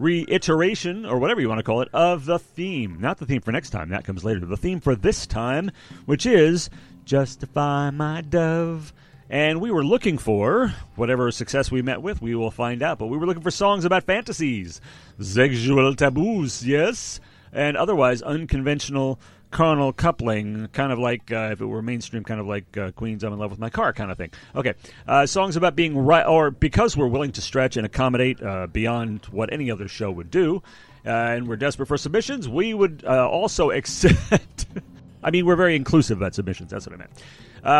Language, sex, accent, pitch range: English, male, American, 110-160 Hz